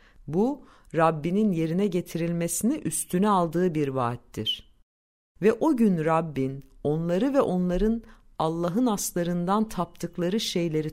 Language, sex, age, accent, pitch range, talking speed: Turkish, female, 50-69, native, 150-215 Hz, 105 wpm